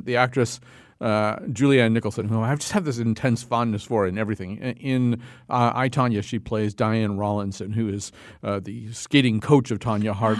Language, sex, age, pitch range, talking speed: English, male, 50-69, 110-130 Hz, 190 wpm